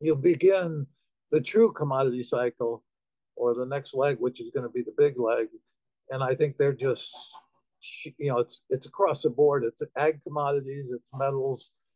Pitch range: 130-165 Hz